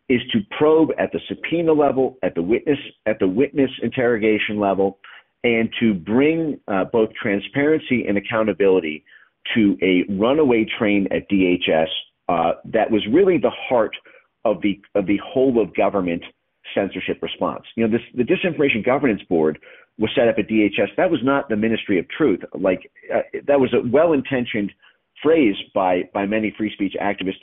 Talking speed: 170 wpm